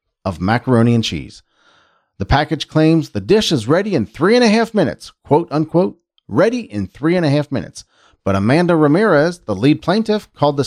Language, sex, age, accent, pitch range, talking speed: English, male, 40-59, American, 110-170 Hz, 190 wpm